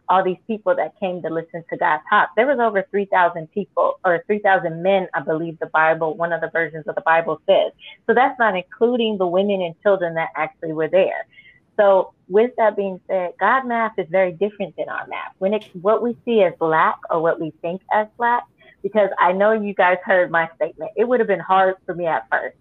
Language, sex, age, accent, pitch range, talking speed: English, female, 30-49, American, 175-230 Hz, 225 wpm